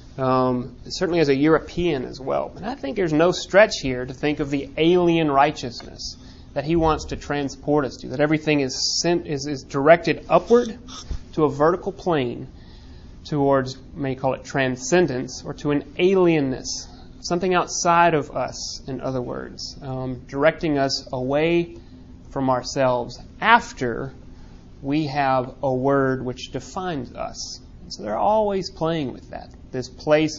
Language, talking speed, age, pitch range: English, 150 wpm, 30-49, 130-155 Hz